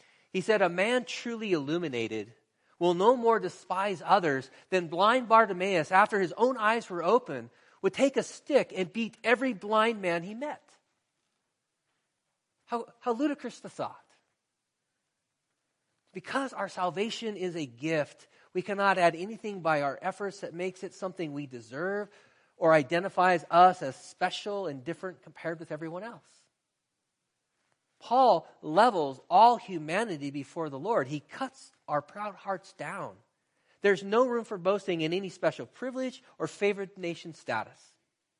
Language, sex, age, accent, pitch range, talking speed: English, male, 40-59, American, 160-215 Hz, 145 wpm